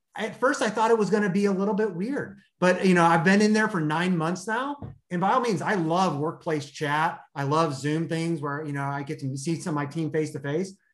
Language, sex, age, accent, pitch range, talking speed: English, male, 30-49, American, 150-185 Hz, 275 wpm